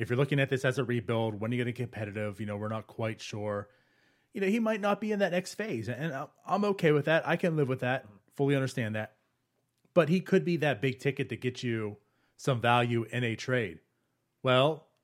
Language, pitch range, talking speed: English, 115-155 Hz, 240 wpm